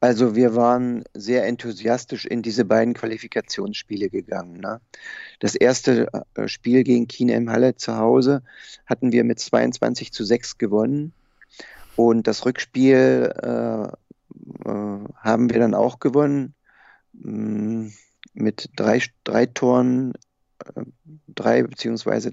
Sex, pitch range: male, 110-135 Hz